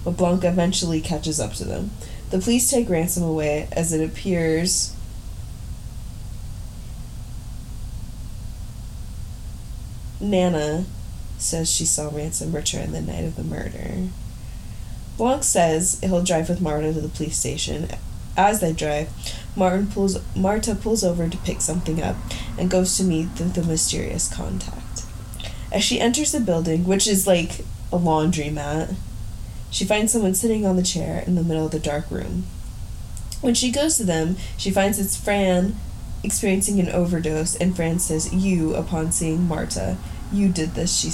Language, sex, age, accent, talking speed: English, female, 20-39, American, 150 wpm